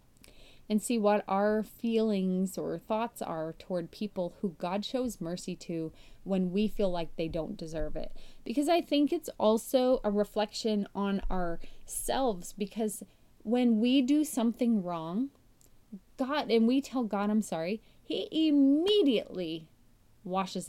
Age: 30-49